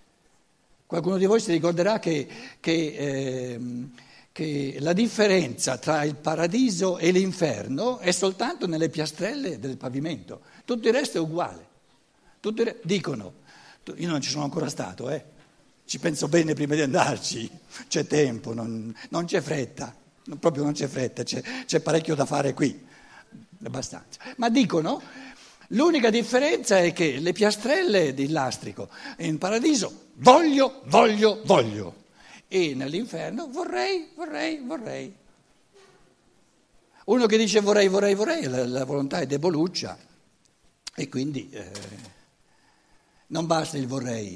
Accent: native